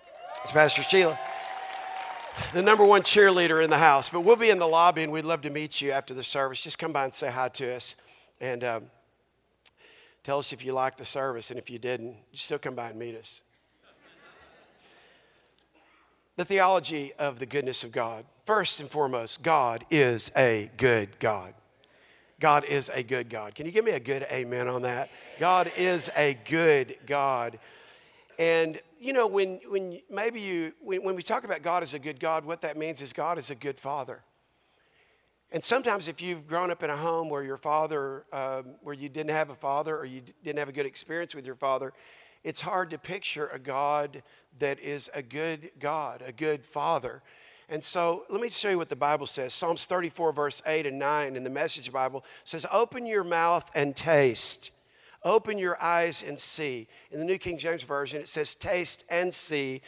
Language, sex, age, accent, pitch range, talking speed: English, male, 50-69, American, 140-185 Hz, 200 wpm